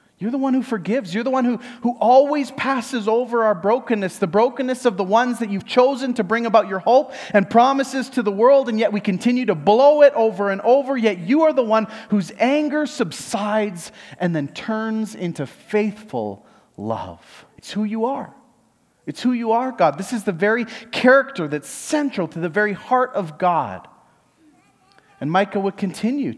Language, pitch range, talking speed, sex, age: English, 155-230 Hz, 190 wpm, male, 30-49